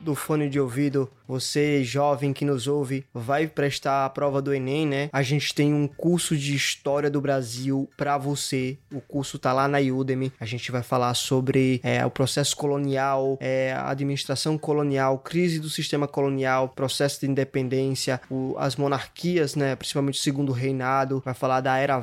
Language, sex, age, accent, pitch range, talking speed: Portuguese, male, 20-39, Brazilian, 135-145 Hz, 170 wpm